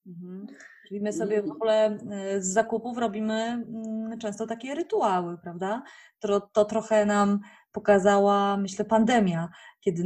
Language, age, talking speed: Polish, 20-39, 115 wpm